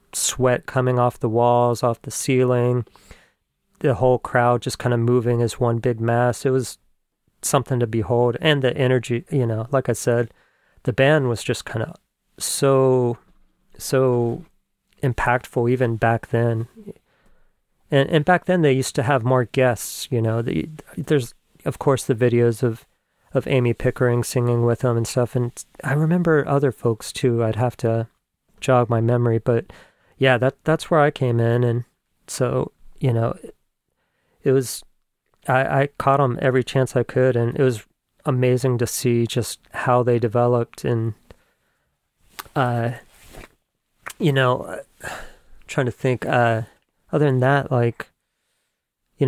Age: 40-59